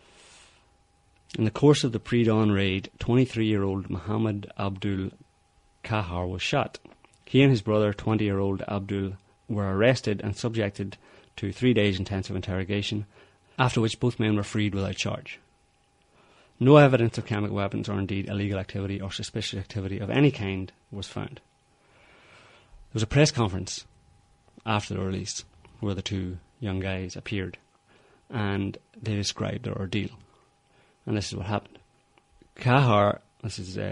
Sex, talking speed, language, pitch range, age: male, 145 wpm, English, 100-115 Hz, 30-49